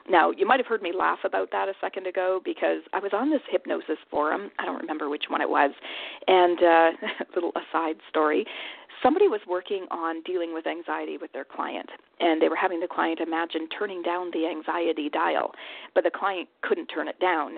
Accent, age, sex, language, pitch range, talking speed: American, 40-59, female, English, 165-235 Hz, 210 wpm